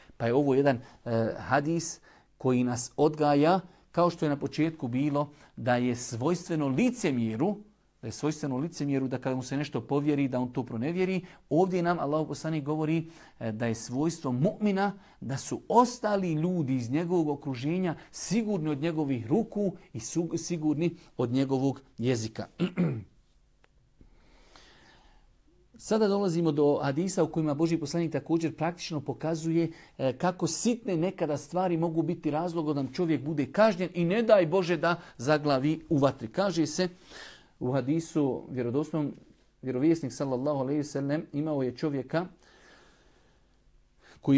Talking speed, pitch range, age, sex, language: 135 wpm, 135-170 Hz, 50-69, male, English